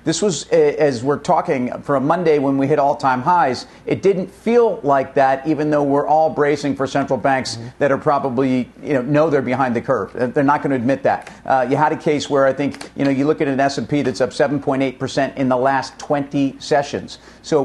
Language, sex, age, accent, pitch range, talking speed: English, male, 50-69, American, 130-150 Hz, 225 wpm